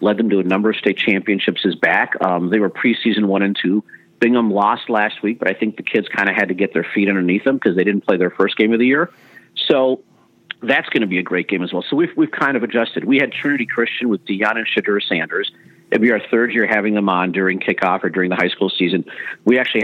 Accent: American